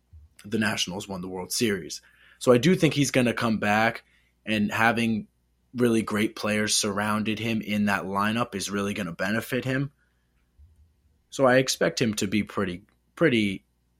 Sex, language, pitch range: male, English, 70-115 Hz